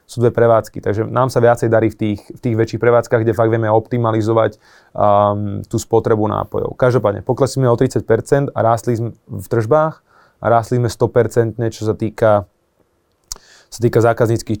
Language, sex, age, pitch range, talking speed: Slovak, male, 20-39, 110-125 Hz, 170 wpm